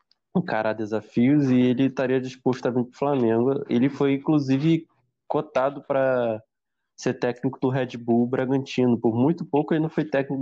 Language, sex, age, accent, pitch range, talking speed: Portuguese, male, 20-39, Brazilian, 110-135 Hz, 175 wpm